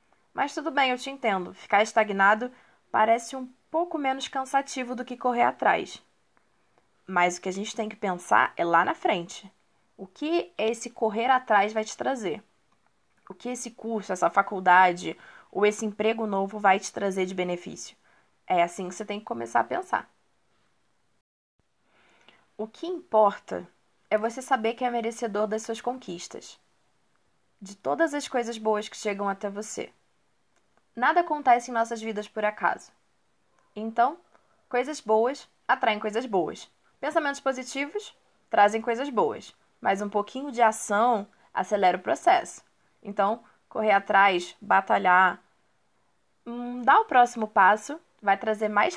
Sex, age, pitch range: female, 20-39, 205-260 Hz